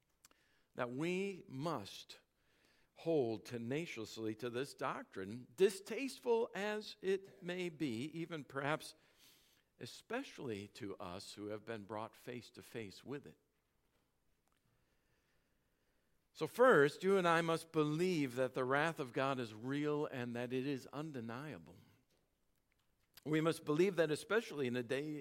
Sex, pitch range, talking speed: male, 135-200 Hz, 130 wpm